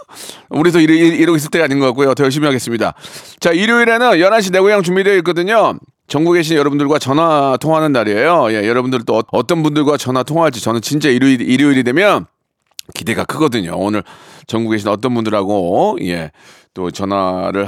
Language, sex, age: Korean, male, 40-59